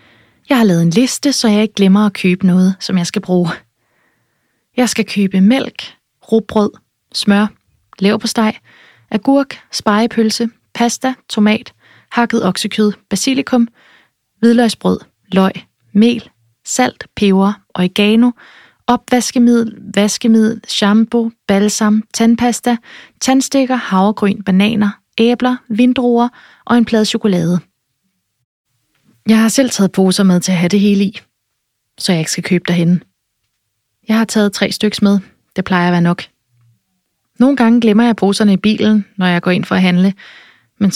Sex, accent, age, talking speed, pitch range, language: female, native, 20-39, 140 wpm, 170-230 Hz, Danish